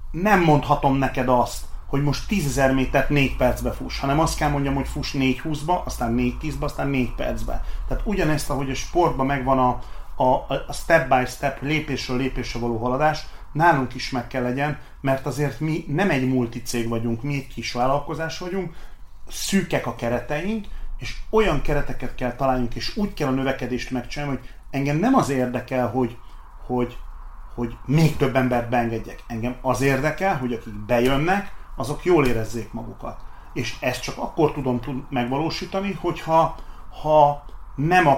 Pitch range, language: 125-150 Hz, Hungarian